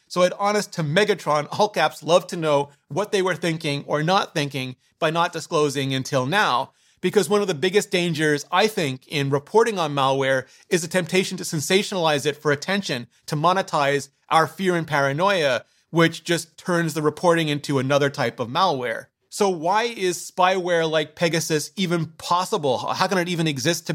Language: English